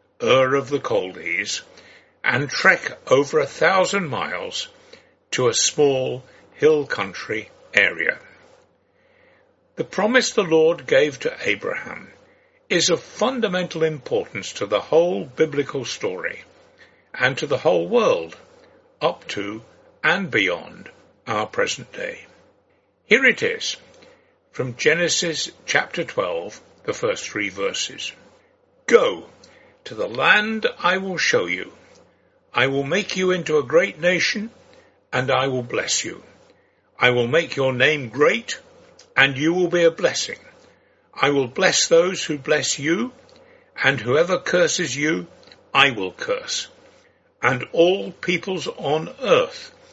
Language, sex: English, male